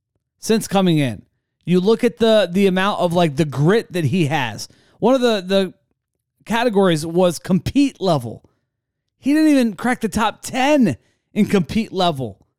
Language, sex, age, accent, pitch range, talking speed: English, male, 30-49, American, 130-205 Hz, 160 wpm